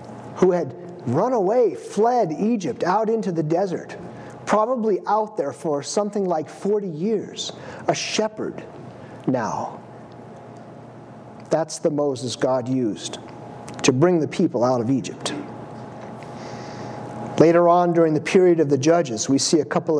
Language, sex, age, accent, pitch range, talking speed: English, male, 50-69, American, 150-190 Hz, 135 wpm